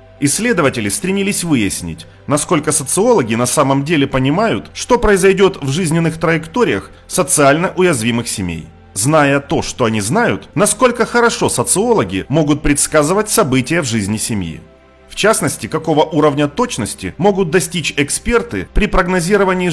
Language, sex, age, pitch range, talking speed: Russian, male, 30-49, 125-185 Hz, 125 wpm